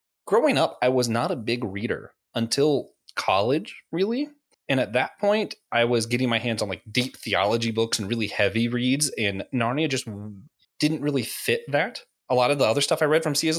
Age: 20-39